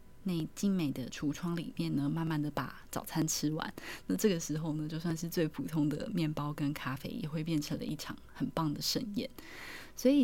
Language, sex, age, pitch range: Chinese, female, 20-39, 150-180 Hz